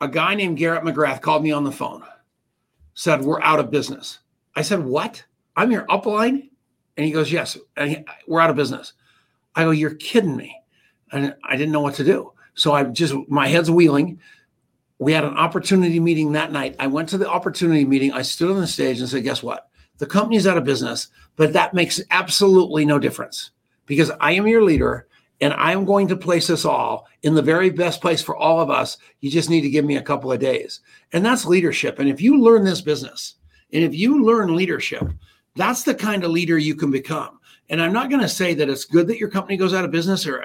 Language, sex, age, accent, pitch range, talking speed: English, male, 50-69, American, 145-185 Hz, 225 wpm